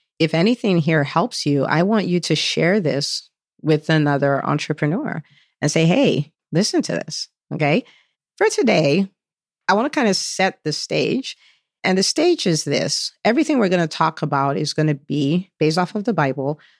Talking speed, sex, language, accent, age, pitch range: 180 wpm, female, English, American, 40-59, 150-180 Hz